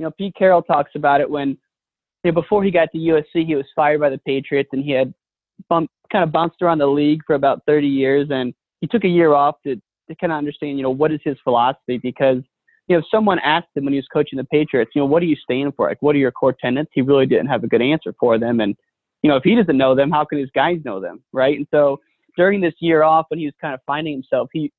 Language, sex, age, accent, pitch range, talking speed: English, male, 20-39, American, 135-165 Hz, 280 wpm